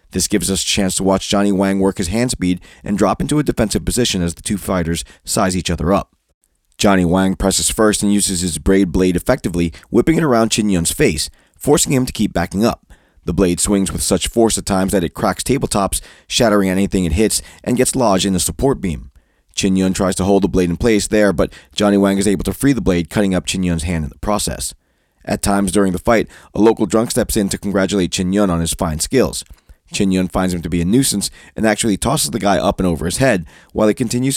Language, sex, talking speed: English, male, 240 wpm